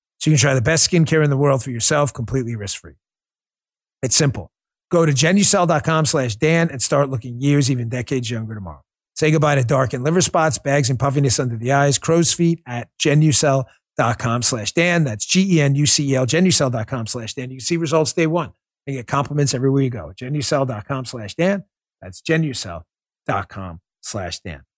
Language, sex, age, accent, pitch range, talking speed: English, male, 40-59, American, 135-215 Hz, 170 wpm